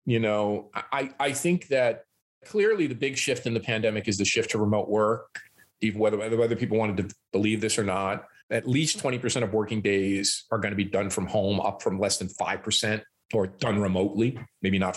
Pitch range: 105-150 Hz